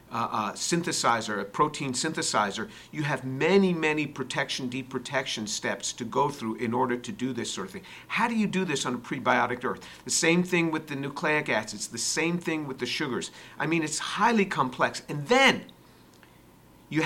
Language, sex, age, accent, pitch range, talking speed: English, male, 50-69, American, 135-185 Hz, 190 wpm